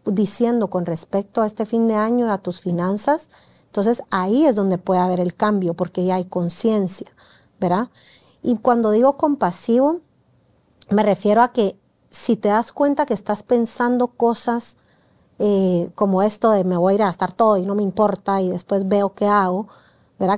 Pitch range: 190-235 Hz